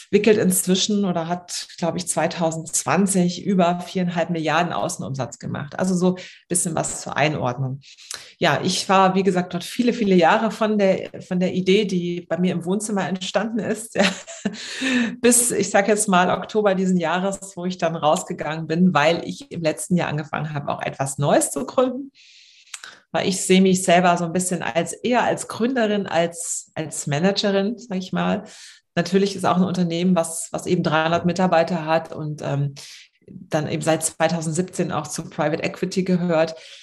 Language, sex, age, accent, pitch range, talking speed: German, female, 30-49, German, 165-195 Hz, 170 wpm